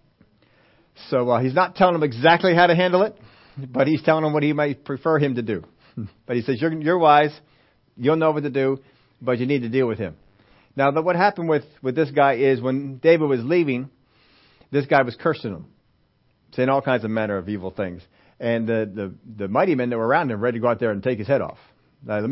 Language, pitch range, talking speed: English, 115-145 Hz, 235 wpm